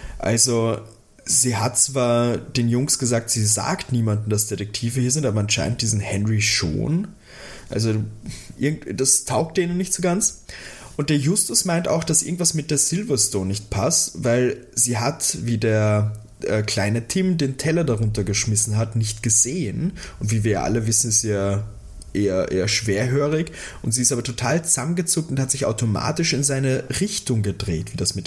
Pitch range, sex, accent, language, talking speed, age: 105-140 Hz, male, German, German, 170 wpm, 20-39